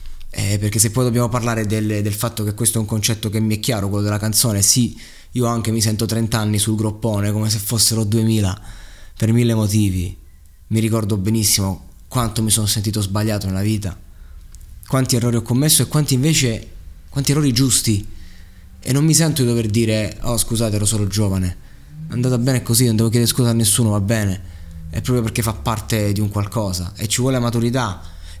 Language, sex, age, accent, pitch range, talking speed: Italian, male, 20-39, native, 100-120 Hz, 195 wpm